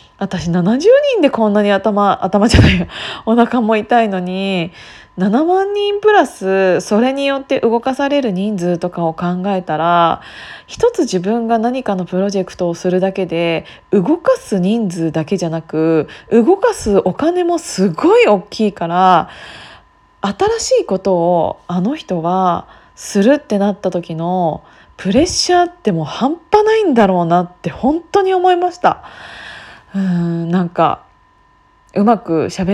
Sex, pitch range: female, 180-270 Hz